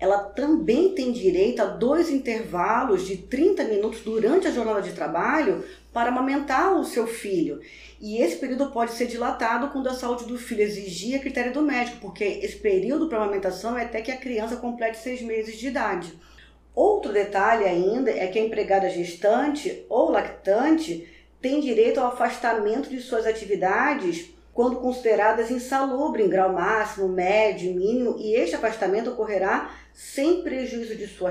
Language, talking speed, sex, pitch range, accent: Portuguese, 160 wpm, female, 215-265 Hz, Brazilian